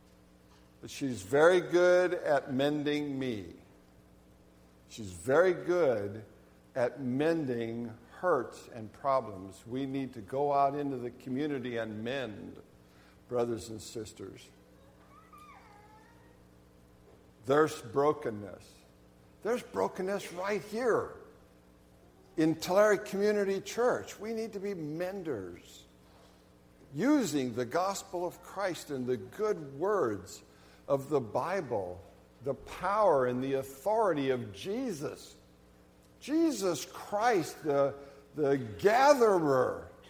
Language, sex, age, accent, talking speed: English, male, 60-79, American, 100 wpm